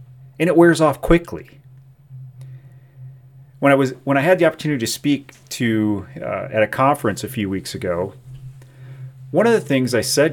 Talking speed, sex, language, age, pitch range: 175 wpm, male, English, 40-59, 130-140 Hz